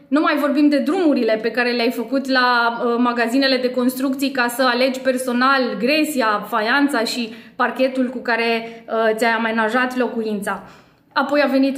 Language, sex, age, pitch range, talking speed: Romanian, female, 20-39, 250-310 Hz, 160 wpm